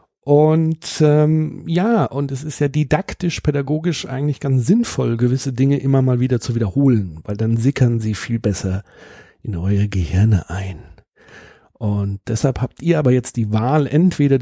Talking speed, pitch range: 160 wpm, 110-155 Hz